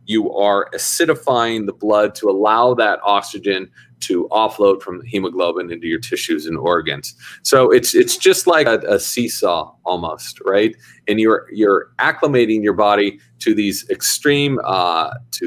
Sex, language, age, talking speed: male, English, 40-59, 155 wpm